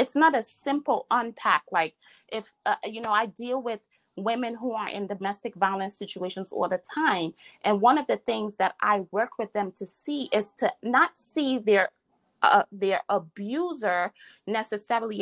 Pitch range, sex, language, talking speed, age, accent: 195-270 Hz, female, English, 175 wpm, 30-49, American